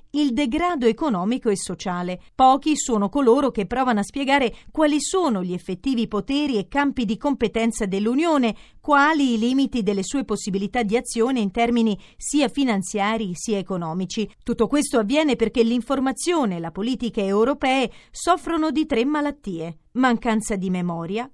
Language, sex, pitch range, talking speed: Italian, female, 210-280 Hz, 145 wpm